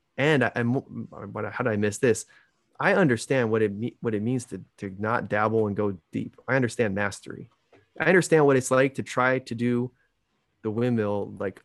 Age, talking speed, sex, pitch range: 20-39, 185 wpm, male, 100-120 Hz